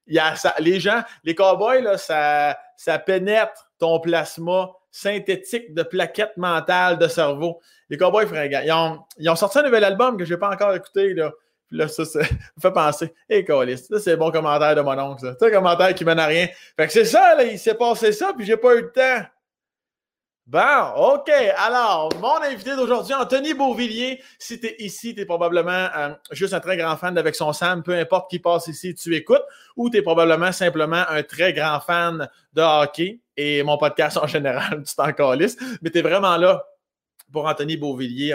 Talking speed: 210 wpm